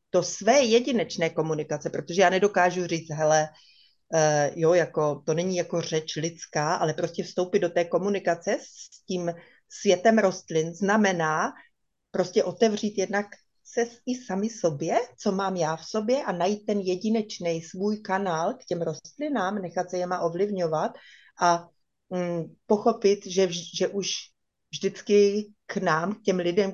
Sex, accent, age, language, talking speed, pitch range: female, native, 30-49, Czech, 145 wpm, 175-205 Hz